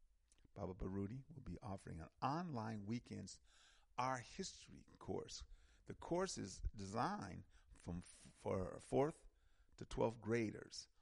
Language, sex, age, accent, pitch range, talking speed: English, male, 50-69, American, 80-120 Hz, 120 wpm